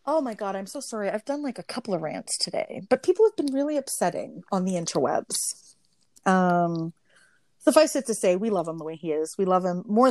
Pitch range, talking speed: 175-245 Hz, 230 wpm